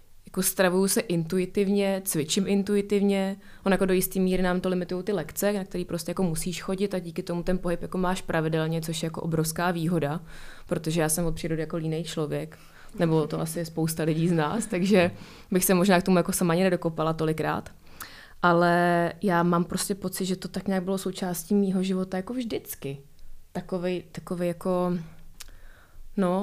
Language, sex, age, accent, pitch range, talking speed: Czech, female, 20-39, native, 165-190 Hz, 180 wpm